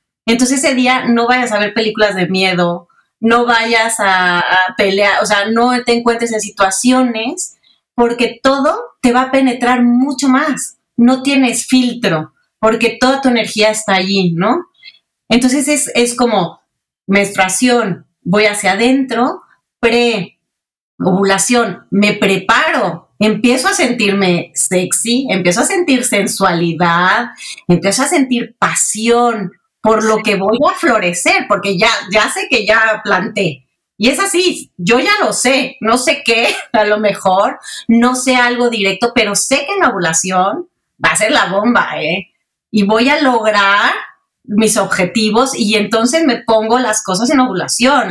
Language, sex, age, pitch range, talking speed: Spanish, female, 30-49, 200-250 Hz, 145 wpm